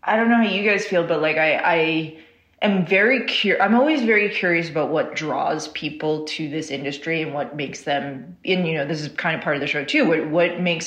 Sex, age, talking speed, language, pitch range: female, 30-49, 240 wpm, English, 145-175 Hz